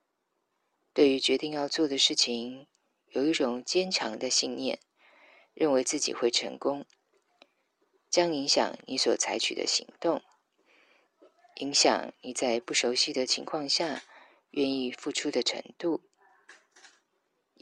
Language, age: Chinese, 20-39